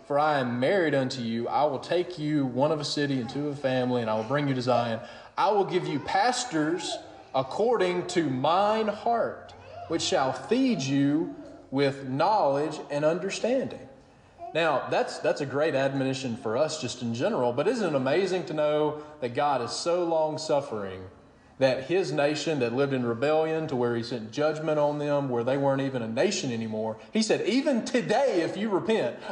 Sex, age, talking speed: male, 30-49, 190 wpm